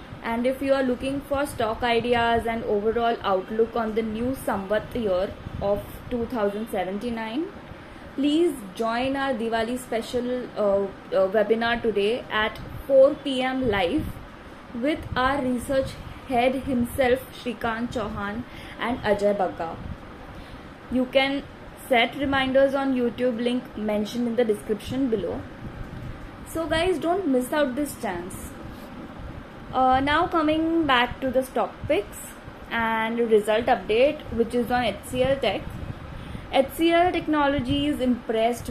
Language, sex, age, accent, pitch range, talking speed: English, female, 20-39, Indian, 225-270 Hz, 120 wpm